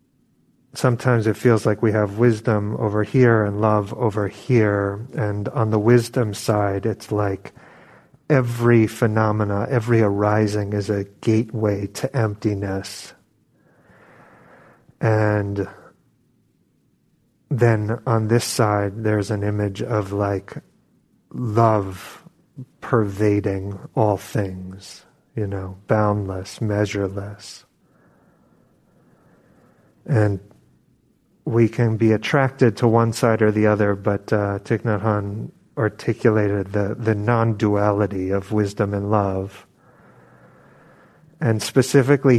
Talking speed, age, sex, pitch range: 105 wpm, 40-59, male, 100-120 Hz